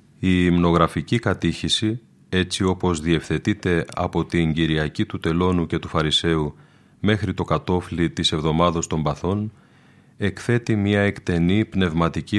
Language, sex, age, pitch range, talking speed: Greek, male, 30-49, 85-100 Hz, 120 wpm